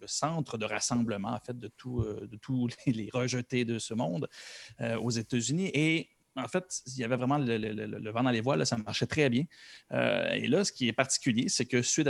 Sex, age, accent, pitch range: male, 30-49, Canadian, 115-140 Hz